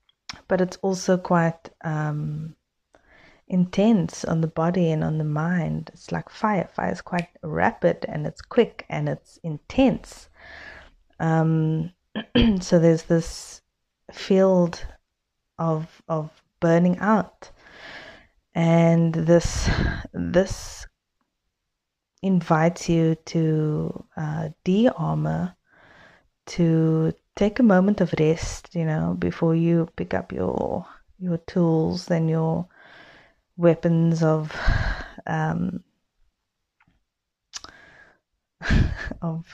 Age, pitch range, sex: 20-39, 155-180 Hz, female